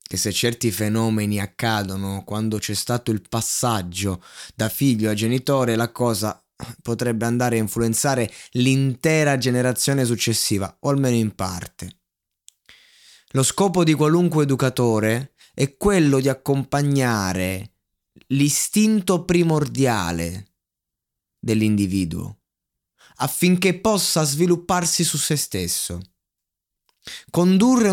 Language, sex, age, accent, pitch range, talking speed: Italian, male, 20-39, native, 105-150 Hz, 95 wpm